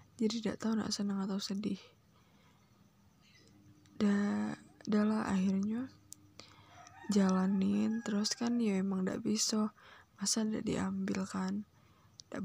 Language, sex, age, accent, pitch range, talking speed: Indonesian, female, 10-29, native, 195-230 Hz, 95 wpm